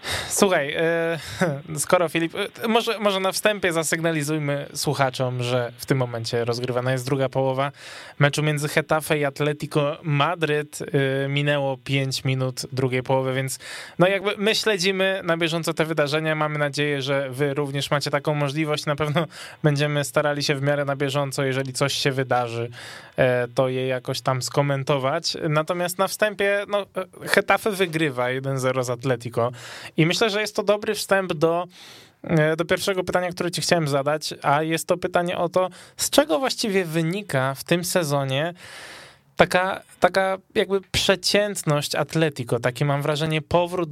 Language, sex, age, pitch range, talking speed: Polish, male, 20-39, 135-180 Hz, 150 wpm